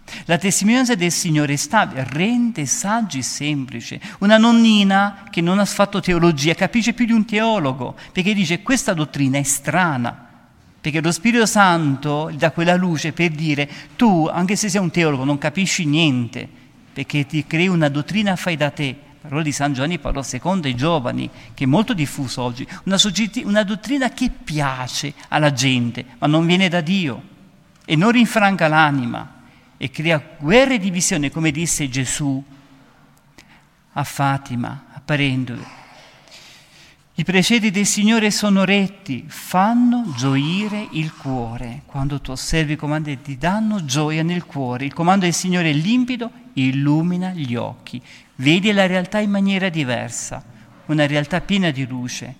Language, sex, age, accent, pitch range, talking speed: Italian, male, 50-69, native, 140-195 Hz, 155 wpm